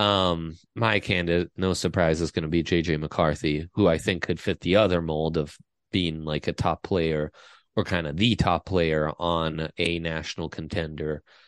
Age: 30-49